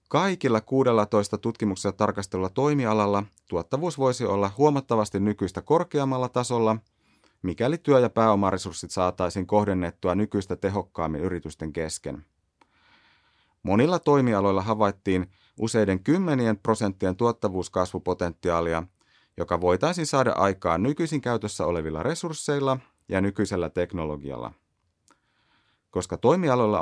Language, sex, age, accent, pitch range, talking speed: Finnish, male, 30-49, native, 90-120 Hz, 95 wpm